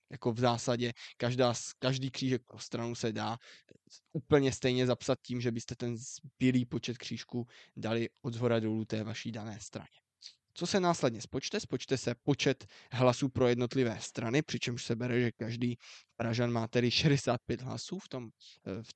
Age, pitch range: 20-39, 115-140 Hz